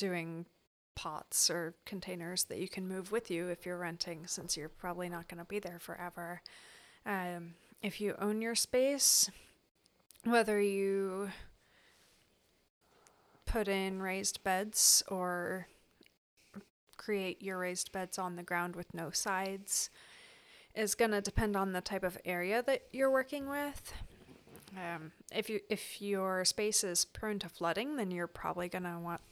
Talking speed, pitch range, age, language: 150 wpm, 175-210 Hz, 30-49, English